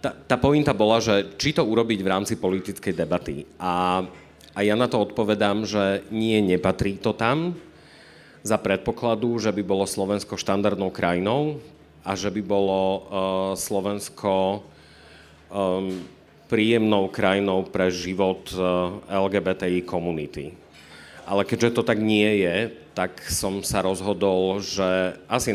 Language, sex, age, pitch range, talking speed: Slovak, male, 40-59, 90-105 Hz, 125 wpm